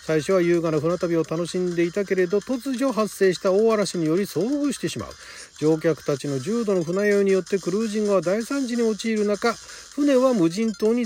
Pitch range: 145-220 Hz